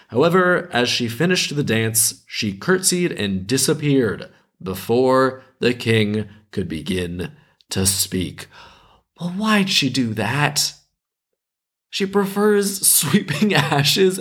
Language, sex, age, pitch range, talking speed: English, male, 20-39, 110-160 Hz, 110 wpm